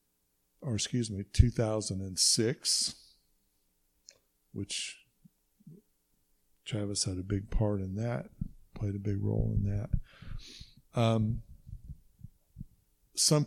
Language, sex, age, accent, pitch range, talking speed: English, male, 60-79, American, 105-125 Hz, 90 wpm